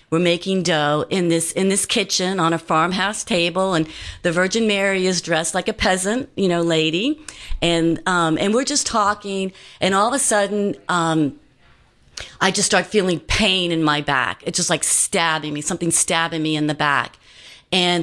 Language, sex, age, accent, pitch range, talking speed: English, female, 40-59, American, 160-195 Hz, 185 wpm